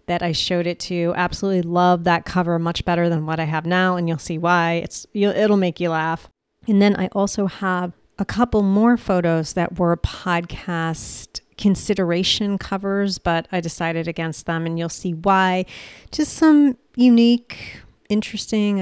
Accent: American